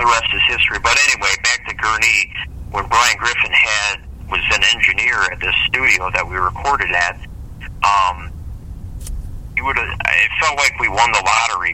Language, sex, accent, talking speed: English, male, American, 165 wpm